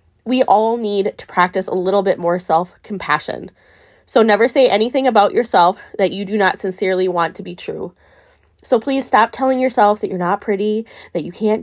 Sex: female